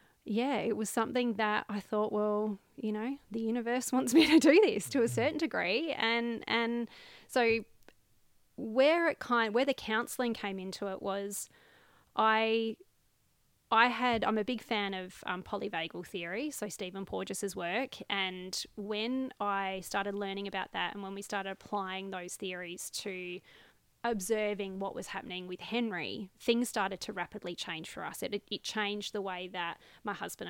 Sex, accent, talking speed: female, Australian, 165 wpm